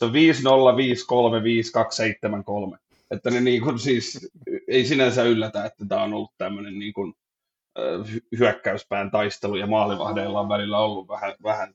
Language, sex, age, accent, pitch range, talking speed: Finnish, male, 30-49, native, 105-135 Hz, 120 wpm